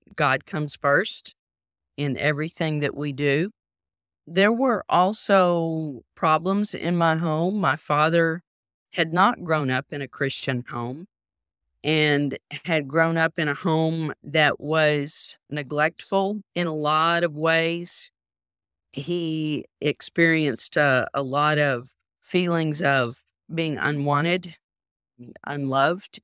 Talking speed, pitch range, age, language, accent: 115 wpm, 140-165 Hz, 40-59, English, American